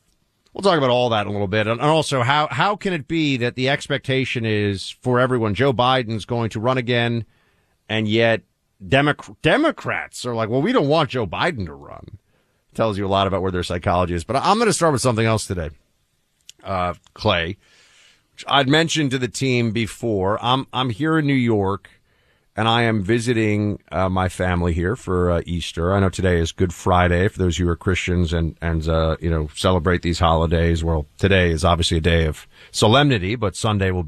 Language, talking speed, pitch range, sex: English, 210 wpm, 90-125 Hz, male